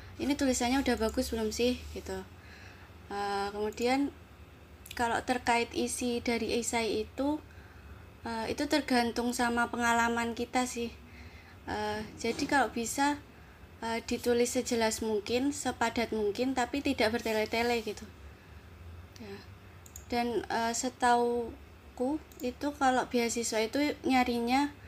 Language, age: Indonesian, 20-39